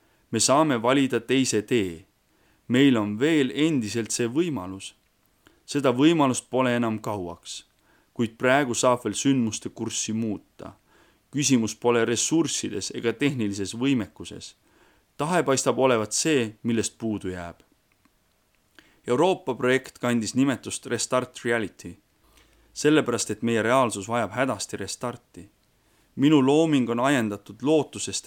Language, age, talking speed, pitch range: English, 30-49, 115 wpm, 105-130 Hz